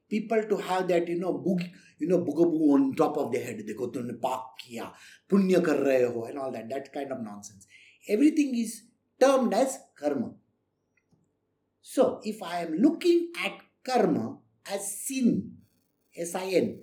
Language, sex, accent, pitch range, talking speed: English, male, Indian, 185-285 Hz, 150 wpm